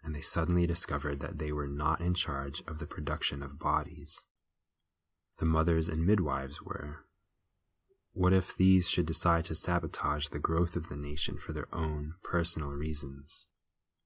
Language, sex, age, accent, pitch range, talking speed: English, male, 20-39, American, 75-90 Hz, 160 wpm